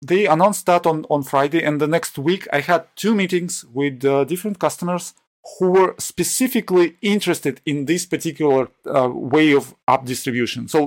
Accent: Polish